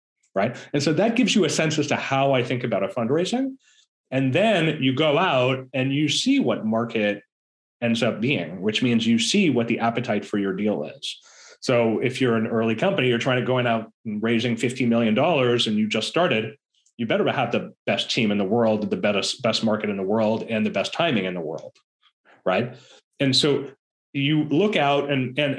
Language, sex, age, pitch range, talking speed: English, male, 30-49, 110-145 Hz, 215 wpm